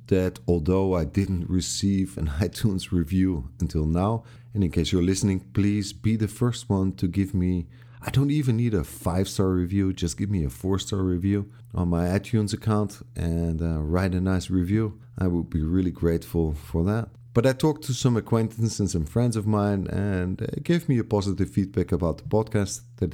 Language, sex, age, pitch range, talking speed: English, male, 50-69, 85-115 Hz, 195 wpm